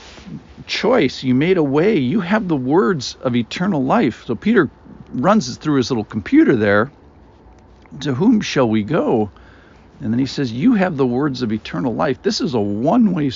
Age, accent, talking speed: 50-69, American, 180 wpm